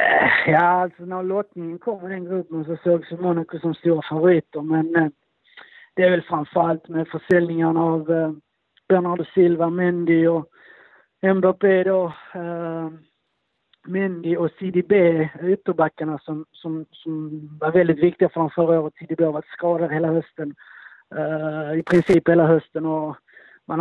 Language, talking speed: Swedish, 150 wpm